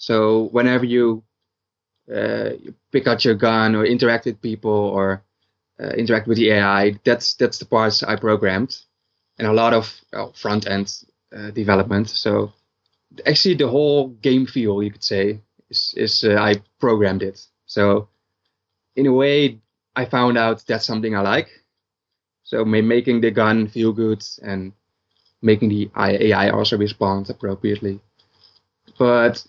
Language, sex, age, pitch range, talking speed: English, male, 20-39, 105-115 Hz, 150 wpm